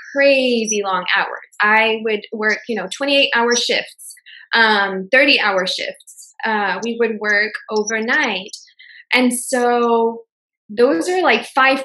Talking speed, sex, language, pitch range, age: 130 wpm, female, English, 215-275 Hz, 20-39